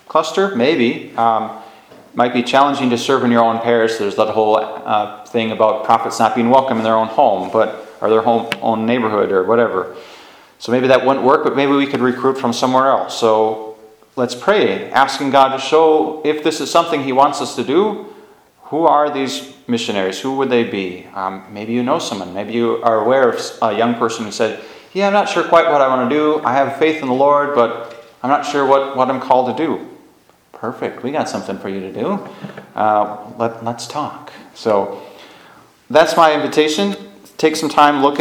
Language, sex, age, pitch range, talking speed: English, male, 30-49, 110-135 Hz, 205 wpm